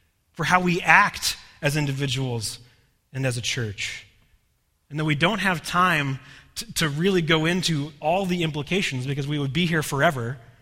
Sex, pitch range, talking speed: male, 110-150 Hz, 170 wpm